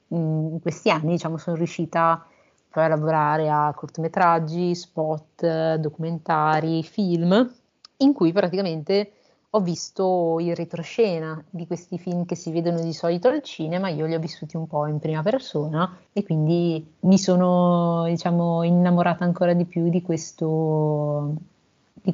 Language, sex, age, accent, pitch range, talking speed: Italian, female, 30-49, native, 160-180 Hz, 145 wpm